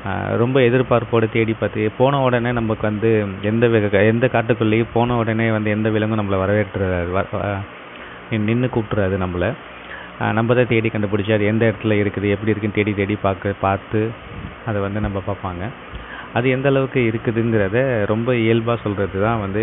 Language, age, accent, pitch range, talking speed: Tamil, 30-49, native, 100-115 Hz, 150 wpm